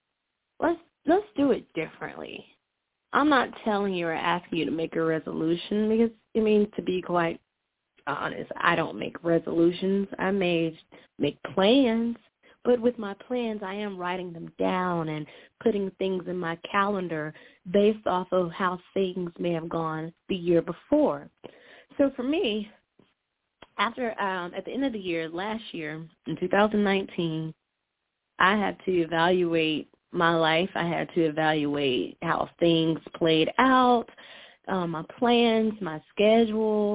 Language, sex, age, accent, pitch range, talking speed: English, female, 20-39, American, 165-230 Hz, 150 wpm